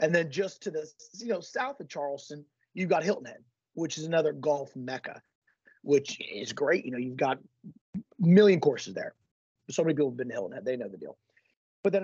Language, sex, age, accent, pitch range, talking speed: English, male, 30-49, American, 140-195 Hz, 220 wpm